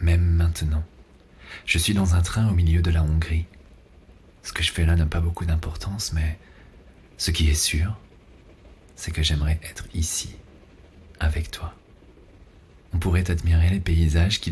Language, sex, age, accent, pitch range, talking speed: French, male, 40-59, French, 80-95 Hz, 160 wpm